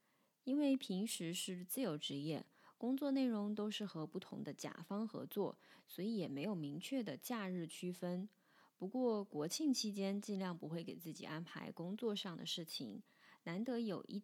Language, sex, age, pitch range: Chinese, female, 20-39, 170-225 Hz